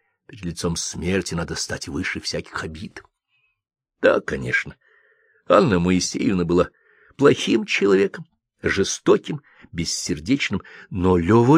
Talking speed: 100 wpm